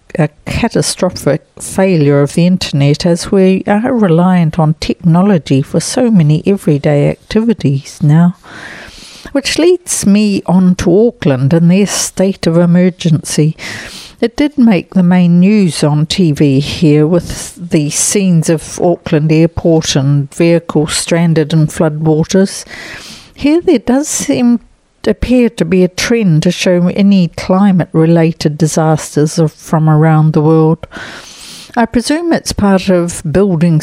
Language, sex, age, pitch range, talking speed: English, female, 60-79, 155-185 Hz, 130 wpm